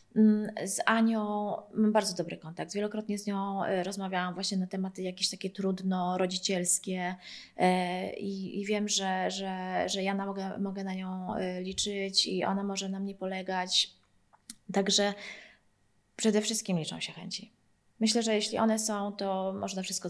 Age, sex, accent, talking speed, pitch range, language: 20-39, female, native, 140 wpm, 185-210 Hz, Polish